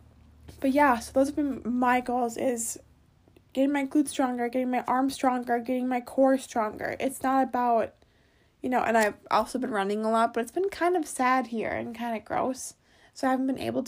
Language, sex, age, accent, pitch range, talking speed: English, female, 20-39, American, 245-315 Hz, 210 wpm